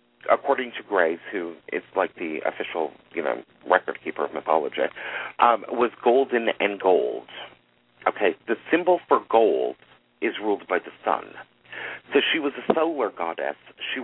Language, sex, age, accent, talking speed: English, male, 40-59, American, 155 wpm